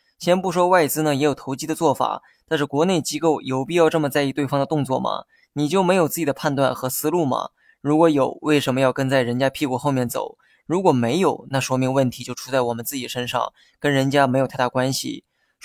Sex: male